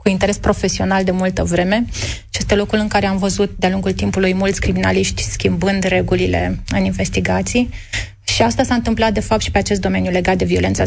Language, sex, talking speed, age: Romanian, female, 195 wpm, 30-49